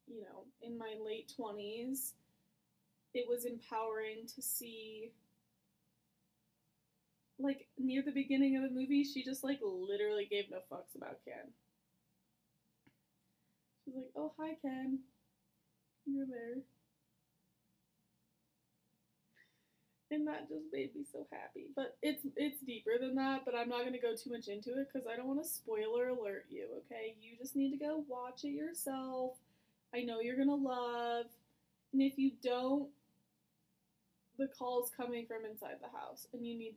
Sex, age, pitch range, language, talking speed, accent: female, 20-39, 225-280 Hz, English, 155 wpm, American